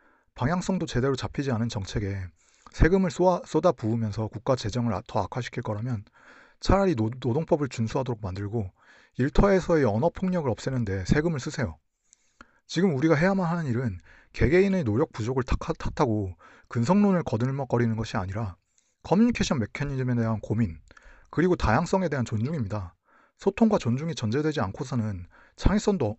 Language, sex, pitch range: Korean, male, 110-160 Hz